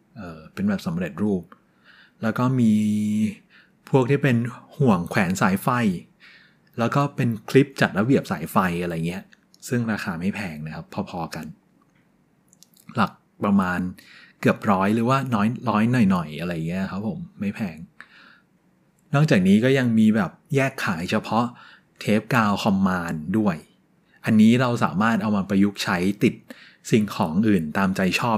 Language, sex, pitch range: Thai, male, 105-150 Hz